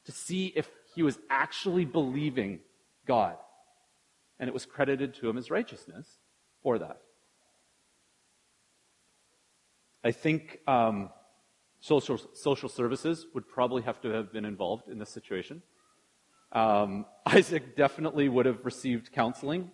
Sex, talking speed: male, 125 wpm